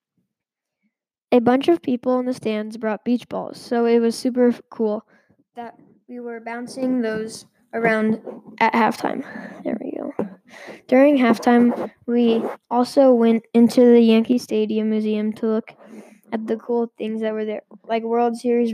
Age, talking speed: 10-29, 155 wpm